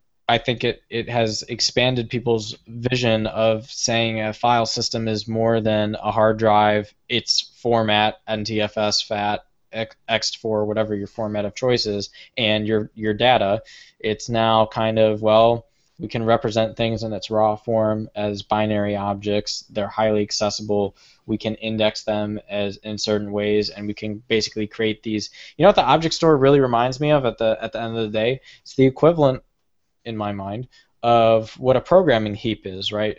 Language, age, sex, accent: English, 10-29, male, American